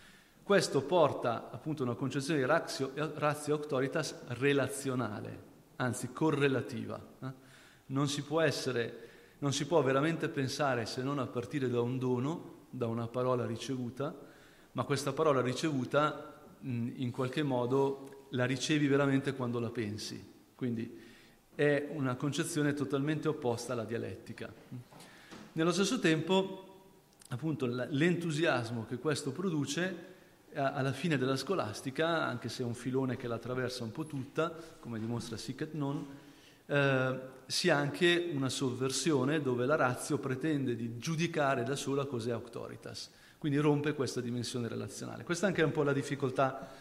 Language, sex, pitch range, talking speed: English, male, 125-155 Hz, 140 wpm